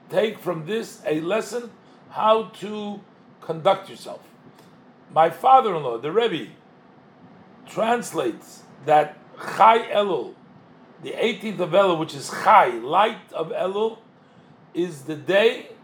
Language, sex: English, male